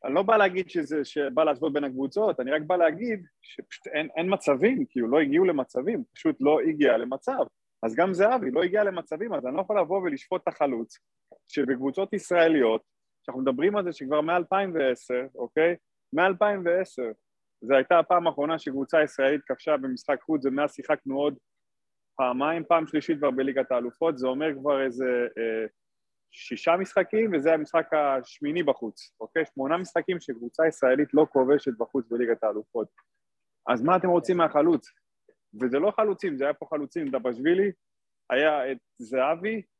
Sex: male